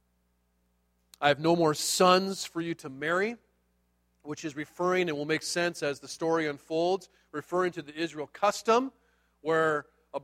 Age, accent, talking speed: 40-59, American, 160 wpm